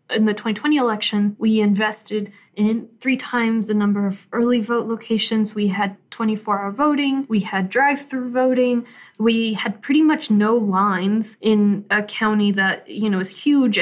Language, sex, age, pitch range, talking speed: English, female, 20-39, 205-240 Hz, 160 wpm